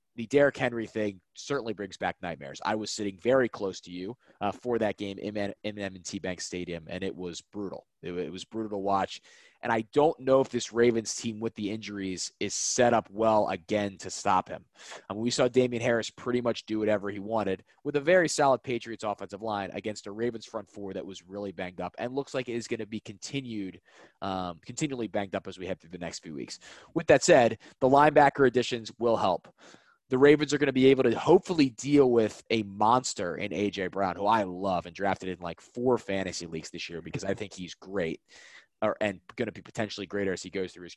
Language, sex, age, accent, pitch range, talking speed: English, male, 20-39, American, 100-125 Hz, 230 wpm